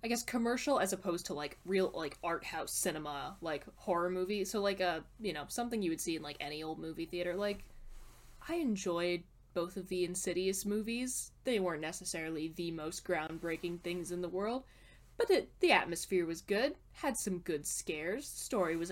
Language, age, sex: English, 10-29, female